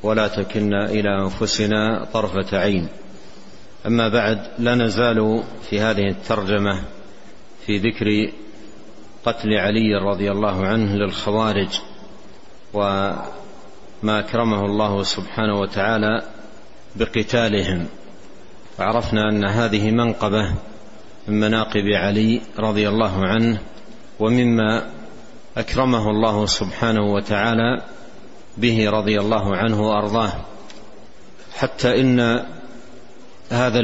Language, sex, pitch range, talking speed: Arabic, male, 105-115 Hz, 90 wpm